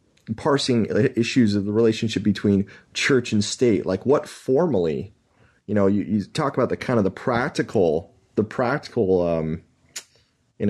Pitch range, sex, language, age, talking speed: 90-110 Hz, male, English, 30-49, 150 wpm